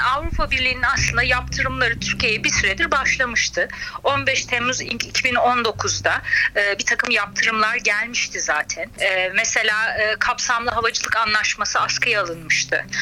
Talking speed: 100 wpm